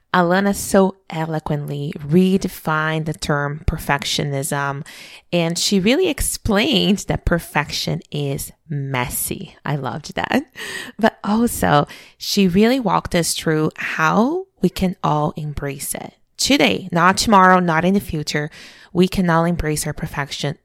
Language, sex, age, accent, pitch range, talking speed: English, female, 20-39, American, 150-195 Hz, 130 wpm